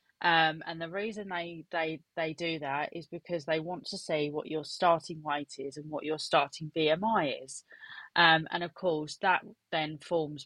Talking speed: 190 wpm